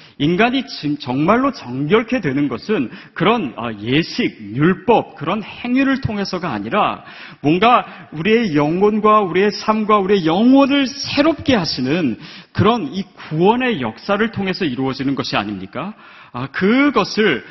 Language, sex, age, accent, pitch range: Korean, male, 40-59, native, 125-205 Hz